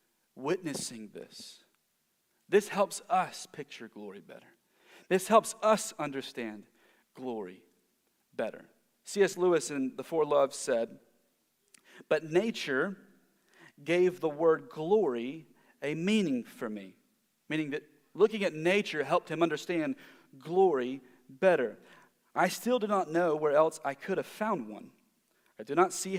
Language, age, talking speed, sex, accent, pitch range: English, 40-59, 130 wpm, male, American, 165-220 Hz